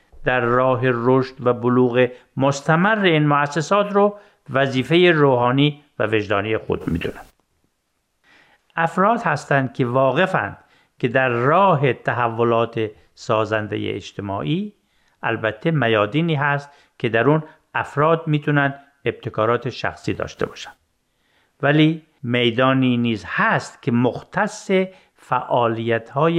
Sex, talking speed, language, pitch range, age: male, 100 wpm, Persian, 120-165 Hz, 50-69